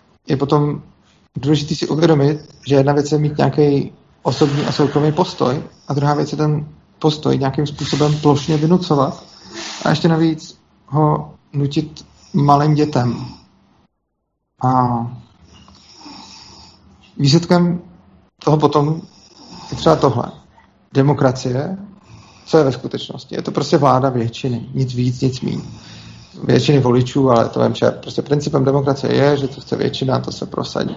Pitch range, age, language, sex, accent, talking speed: 125-150 Hz, 40-59, Czech, male, native, 135 wpm